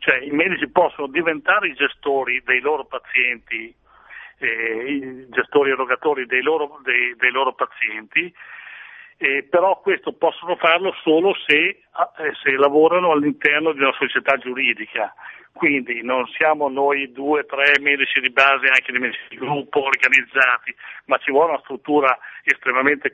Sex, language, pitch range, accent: male, Italian, 130-155 Hz, native